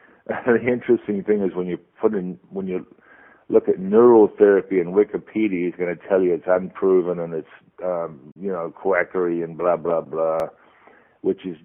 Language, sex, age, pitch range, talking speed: English, male, 50-69, 85-100 Hz, 175 wpm